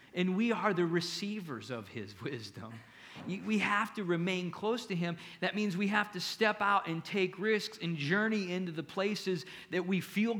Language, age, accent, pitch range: English, 40-59, American, 130-185 Hz